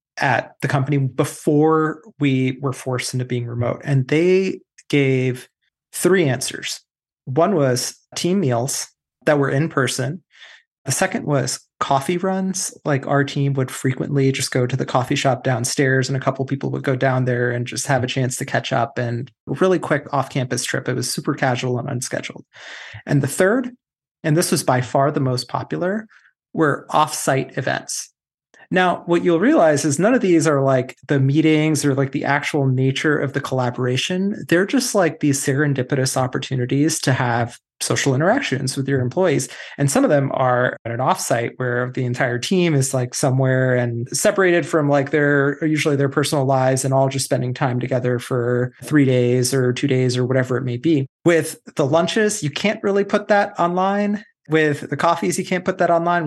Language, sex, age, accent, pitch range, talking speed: English, male, 30-49, American, 130-160 Hz, 185 wpm